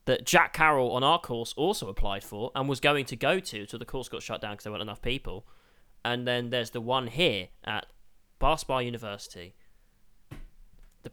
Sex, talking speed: male, 195 wpm